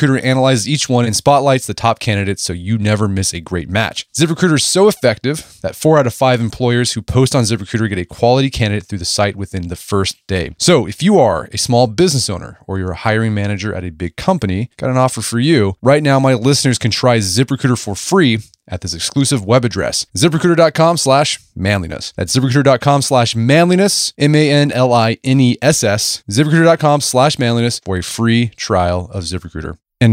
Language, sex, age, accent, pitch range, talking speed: English, male, 30-49, American, 100-135 Hz, 175 wpm